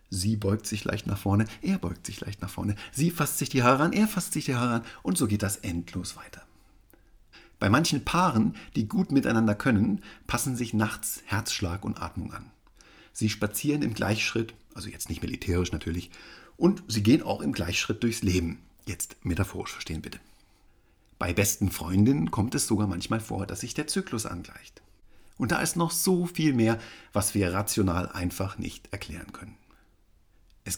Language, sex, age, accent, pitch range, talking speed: German, male, 50-69, German, 90-115 Hz, 180 wpm